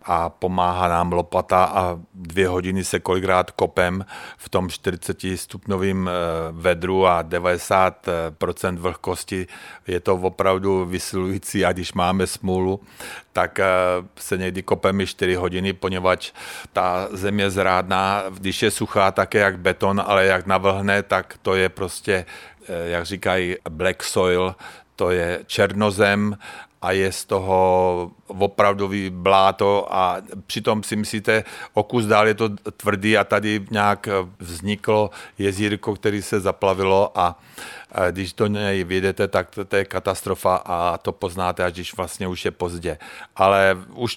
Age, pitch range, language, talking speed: 50-69, 90-100 Hz, Czech, 135 wpm